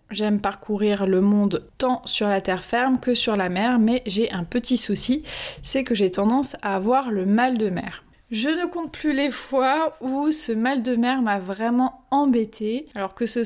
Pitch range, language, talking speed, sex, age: 205-250 Hz, French, 200 wpm, female, 20-39